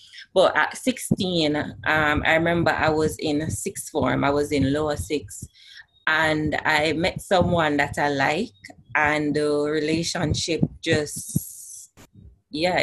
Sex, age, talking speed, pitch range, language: female, 20-39, 130 wpm, 145-175 Hz, English